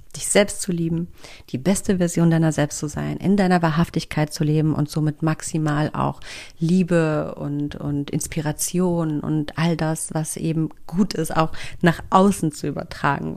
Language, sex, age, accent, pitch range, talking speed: German, female, 40-59, German, 160-200 Hz, 160 wpm